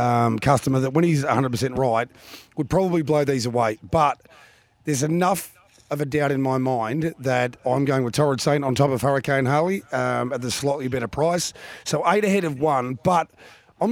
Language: English